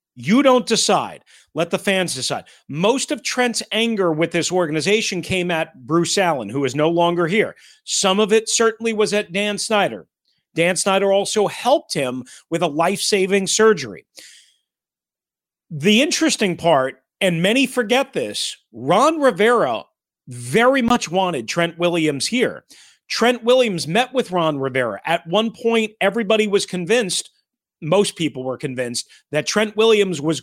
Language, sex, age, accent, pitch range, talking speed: English, male, 40-59, American, 155-210 Hz, 150 wpm